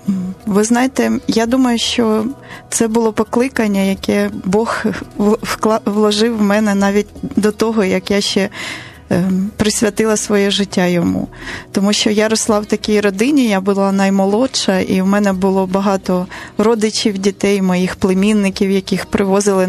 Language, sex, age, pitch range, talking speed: Ukrainian, female, 20-39, 185-215 Hz, 135 wpm